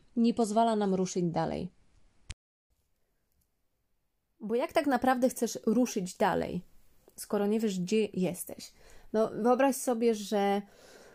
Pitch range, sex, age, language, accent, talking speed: 185-225 Hz, female, 20-39, Polish, native, 115 wpm